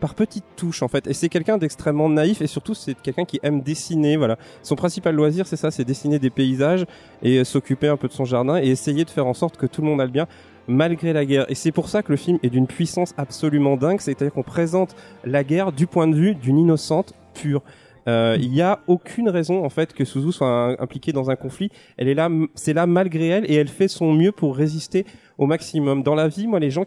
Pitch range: 135-170 Hz